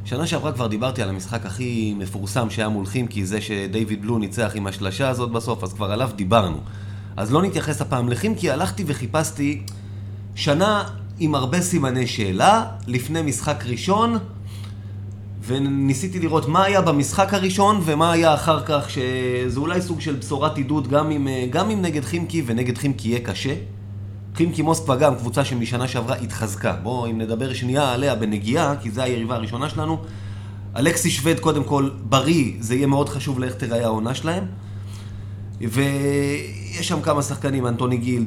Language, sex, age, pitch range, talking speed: Hebrew, male, 30-49, 100-145 Hz, 155 wpm